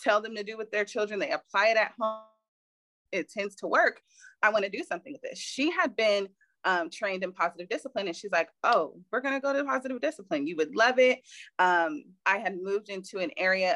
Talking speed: 225 wpm